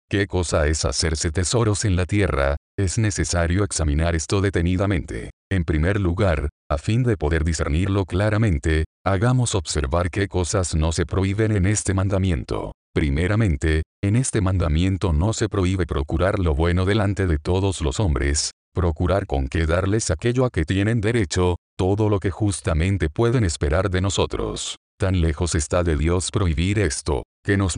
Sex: male